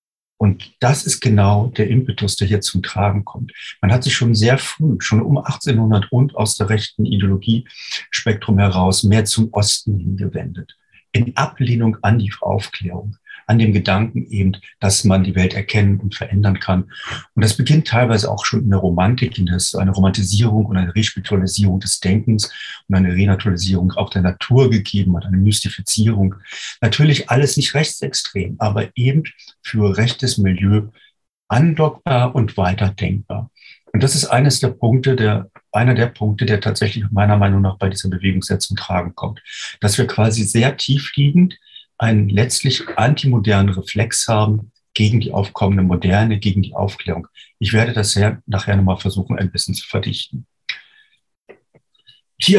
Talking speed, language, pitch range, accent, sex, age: 155 wpm, German, 100-125 Hz, German, male, 40-59